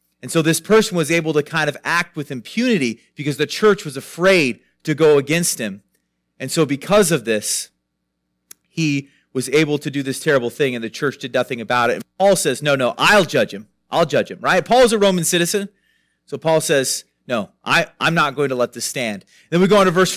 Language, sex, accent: English, male, American